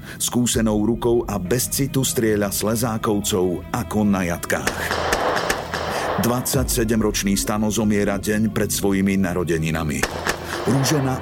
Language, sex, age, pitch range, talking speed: Slovak, male, 50-69, 95-120 Hz, 100 wpm